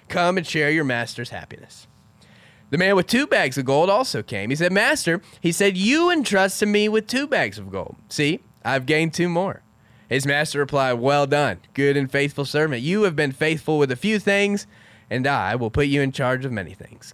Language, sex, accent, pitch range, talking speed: English, male, American, 120-175 Hz, 210 wpm